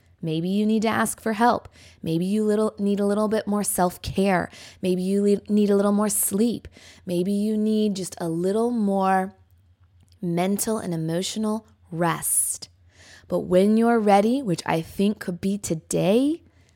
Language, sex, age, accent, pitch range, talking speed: English, female, 20-39, American, 160-225 Hz, 160 wpm